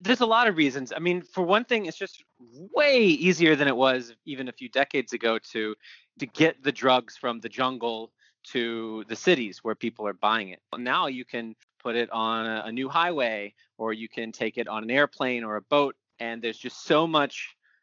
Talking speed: 215 wpm